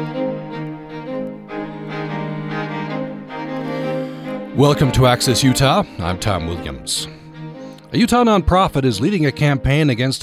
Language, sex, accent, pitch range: English, male, American, 95-130 Hz